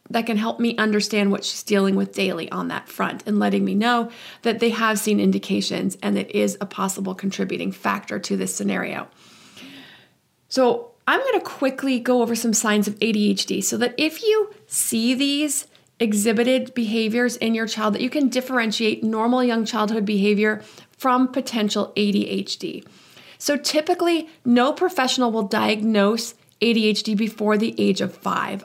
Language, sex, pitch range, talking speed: English, female, 205-250 Hz, 160 wpm